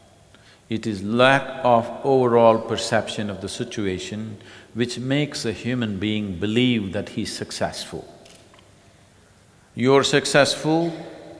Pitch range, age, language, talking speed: 105-130 Hz, 50-69, English, 105 wpm